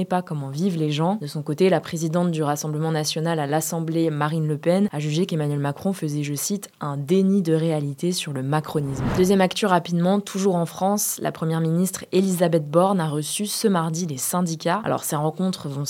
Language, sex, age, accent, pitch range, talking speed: French, female, 20-39, French, 155-185 Hz, 200 wpm